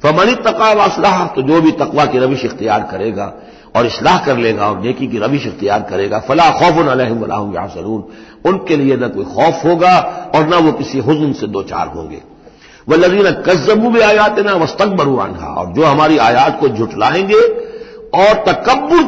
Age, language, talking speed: 60-79, Hindi, 175 wpm